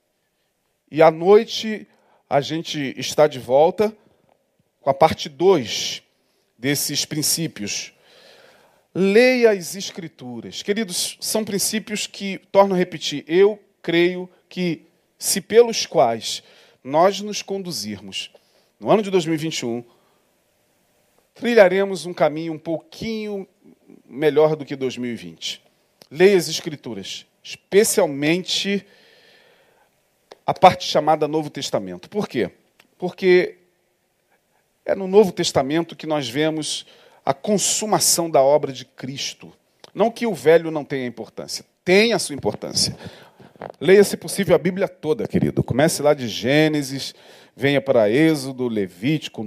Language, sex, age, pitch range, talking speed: Portuguese, male, 40-59, 150-210 Hz, 120 wpm